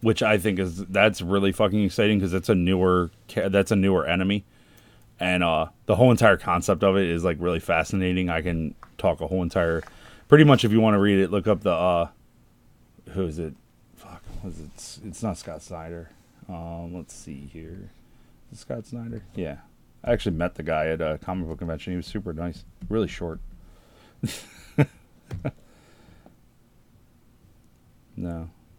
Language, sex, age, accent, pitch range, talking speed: English, male, 30-49, American, 85-105 Hz, 170 wpm